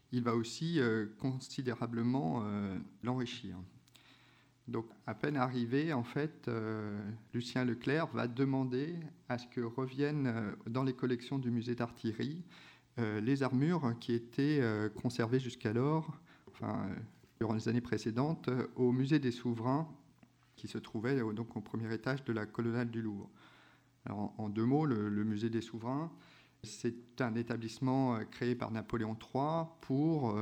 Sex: male